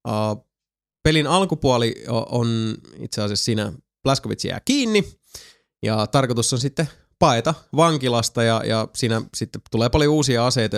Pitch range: 110-135 Hz